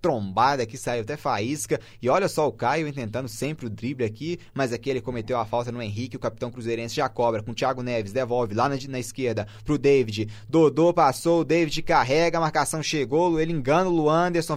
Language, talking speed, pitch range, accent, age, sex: Portuguese, 210 wpm, 120-160 Hz, Brazilian, 20-39, male